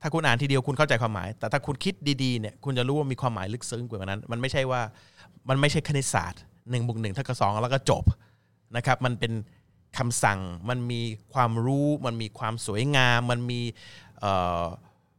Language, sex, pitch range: Thai, male, 110-140 Hz